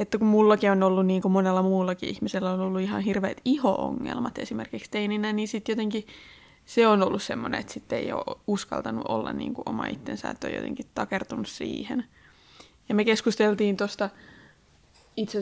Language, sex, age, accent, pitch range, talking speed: Finnish, female, 20-39, native, 190-225 Hz, 170 wpm